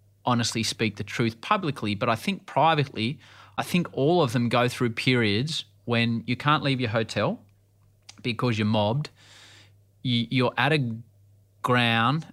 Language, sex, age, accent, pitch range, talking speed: English, male, 30-49, Australian, 105-135 Hz, 145 wpm